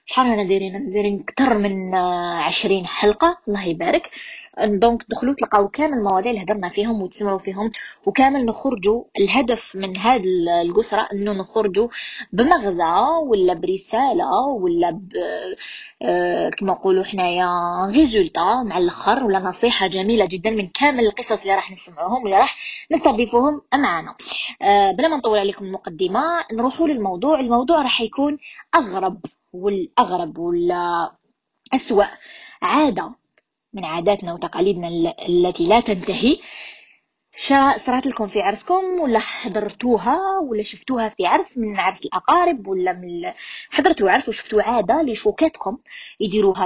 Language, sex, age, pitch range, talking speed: Arabic, female, 20-39, 190-265 Hz, 125 wpm